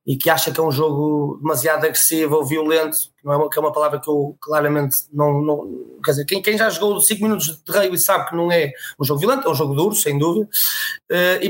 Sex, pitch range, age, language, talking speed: male, 155-195 Hz, 20-39, Portuguese, 255 wpm